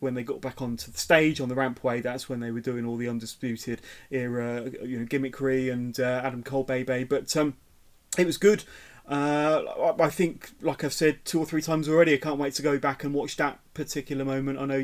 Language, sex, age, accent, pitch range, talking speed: English, male, 30-49, British, 130-155 Hz, 230 wpm